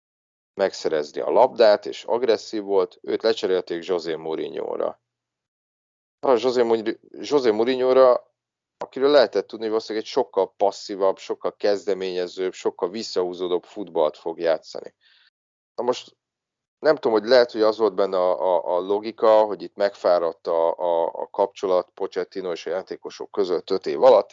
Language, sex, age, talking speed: Hungarian, male, 40-59, 140 wpm